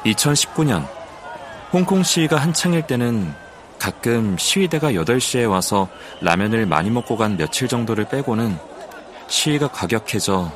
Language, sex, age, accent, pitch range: Korean, male, 30-49, native, 105-140 Hz